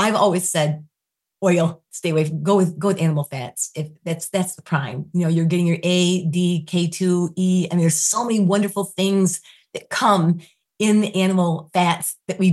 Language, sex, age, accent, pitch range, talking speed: English, female, 30-49, American, 160-180 Hz, 195 wpm